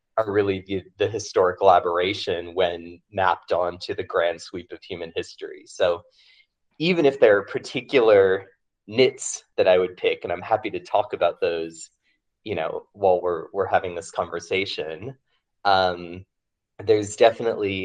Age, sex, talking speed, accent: 20-39, male, 150 wpm, American